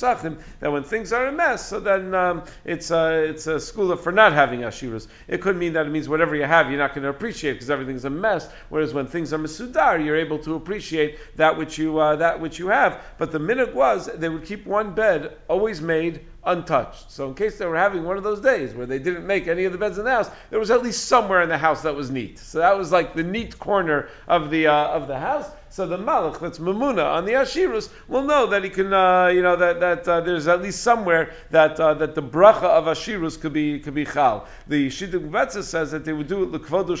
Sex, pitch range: male, 155-195 Hz